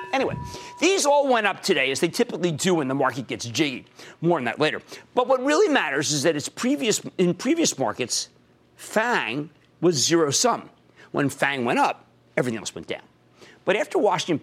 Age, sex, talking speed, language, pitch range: 40-59, male, 175 wpm, English, 125-195 Hz